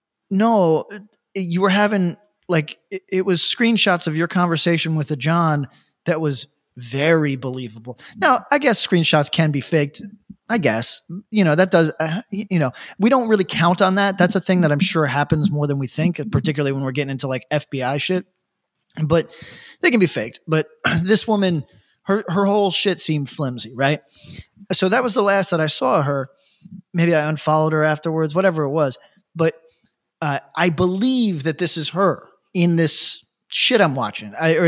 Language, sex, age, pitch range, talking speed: English, male, 20-39, 150-190 Hz, 185 wpm